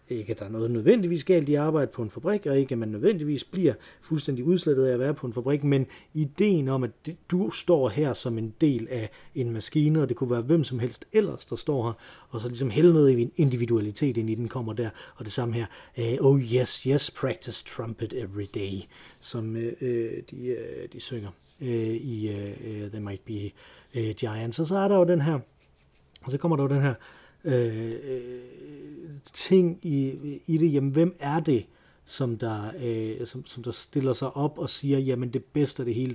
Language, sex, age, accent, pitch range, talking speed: Danish, male, 30-49, native, 115-145 Hz, 185 wpm